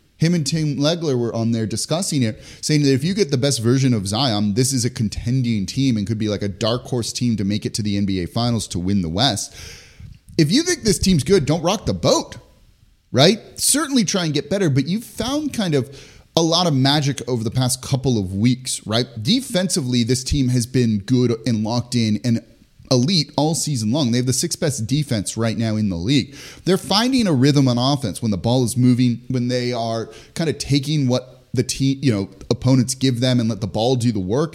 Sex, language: male, English